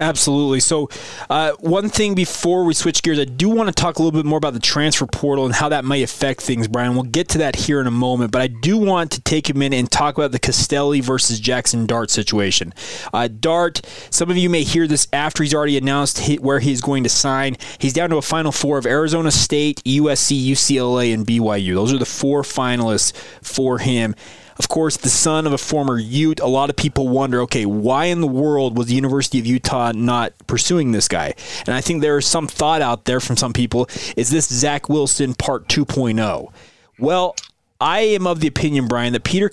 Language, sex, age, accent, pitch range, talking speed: English, male, 20-39, American, 125-155 Hz, 220 wpm